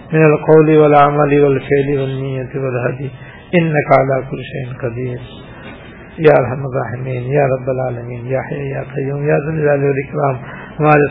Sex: male